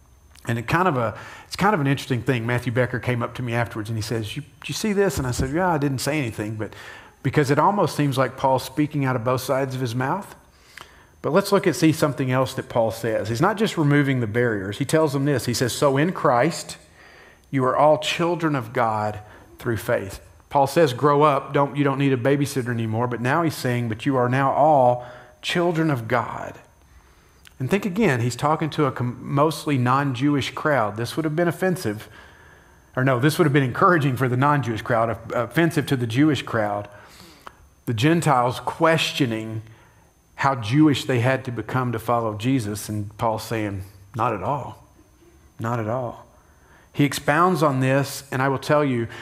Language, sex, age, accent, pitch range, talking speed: English, male, 40-59, American, 115-150 Hz, 200 wpm